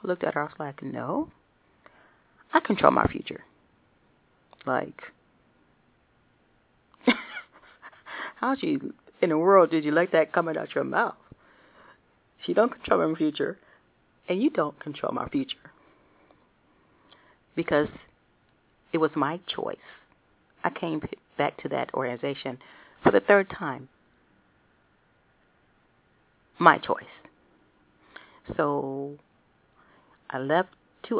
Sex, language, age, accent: female, English, 40-59, American